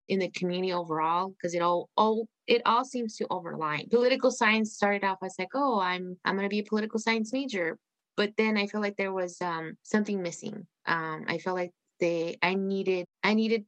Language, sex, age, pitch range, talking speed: English, female, 20-39, 165-200 Hz, 210 wpm